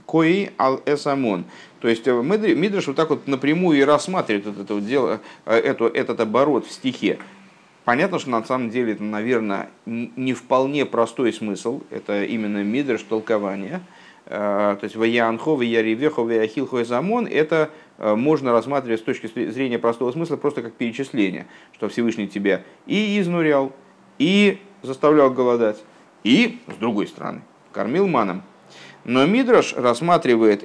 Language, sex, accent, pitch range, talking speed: Russian, male, native, 115-165 Hz, 125 wpm